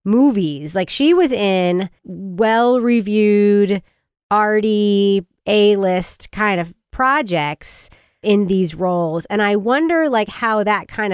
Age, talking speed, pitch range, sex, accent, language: 30-49, 115 wpm, 185-255 Hz, female, American, English